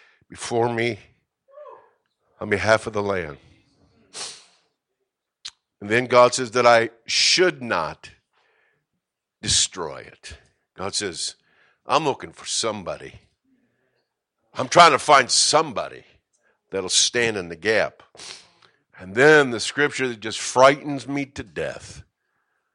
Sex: male